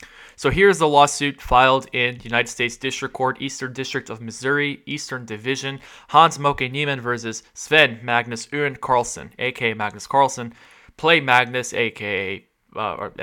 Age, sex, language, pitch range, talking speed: 20-39, male, English, 110-140 Hz, 135 wpm